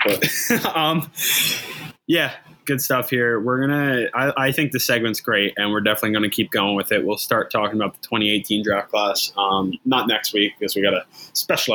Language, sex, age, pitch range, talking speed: English, male, 20-39, 105-135 Hz, 205 wpm